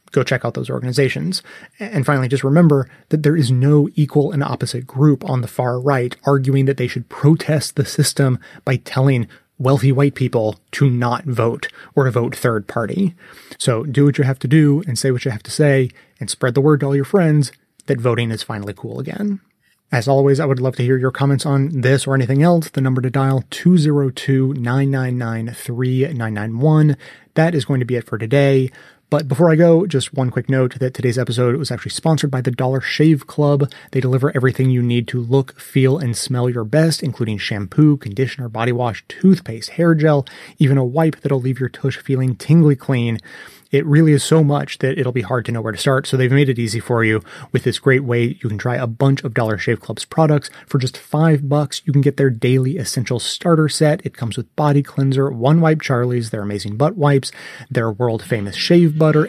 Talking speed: 210 wpm